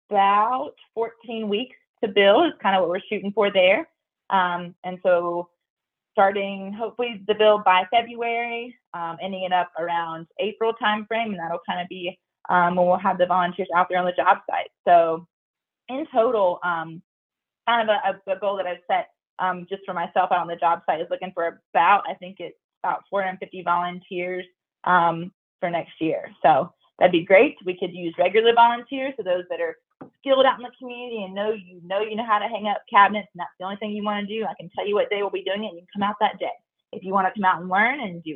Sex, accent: female, American